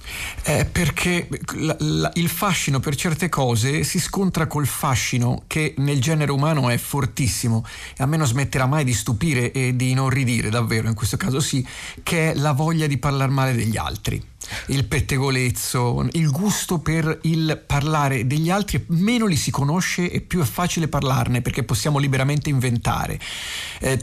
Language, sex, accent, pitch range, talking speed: Italian, male, native, 120-155 Hz, 170 wpm